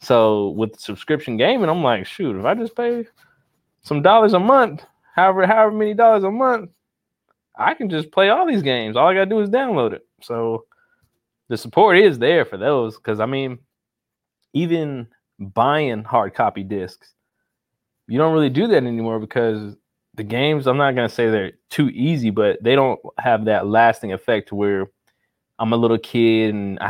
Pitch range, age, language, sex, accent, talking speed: 110-155 Hz, 20-39, English, male, American, 185 wpm